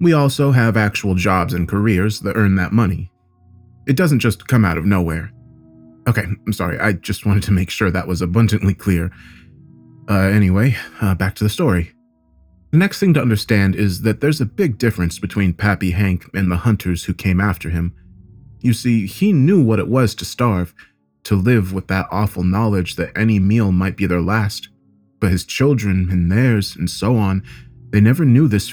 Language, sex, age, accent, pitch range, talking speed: English, male, 30-49, American, 90-115 Hz, 195 wpm